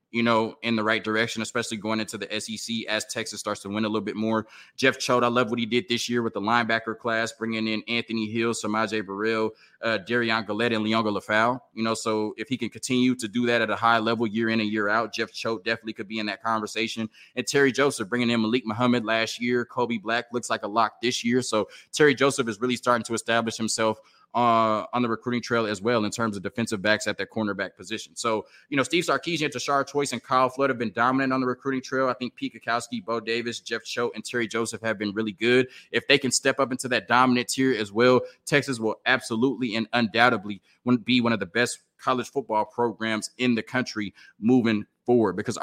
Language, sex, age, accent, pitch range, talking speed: English, male, 20-39, American, 110-125 Hz, 230 wpm